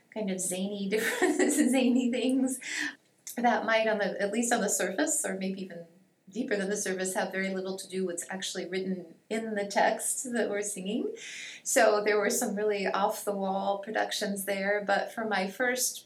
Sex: female